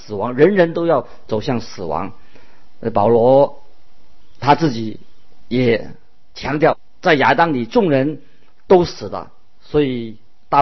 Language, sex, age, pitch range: Chinese, male, 50-69, 115-160 Hz